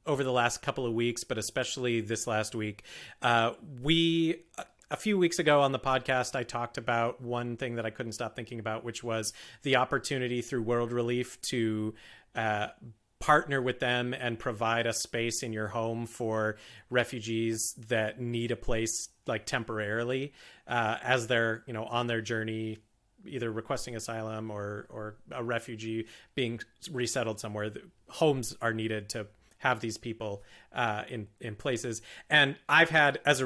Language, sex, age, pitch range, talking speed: English, male, 30-49, 115-130 Hz, 165 wpm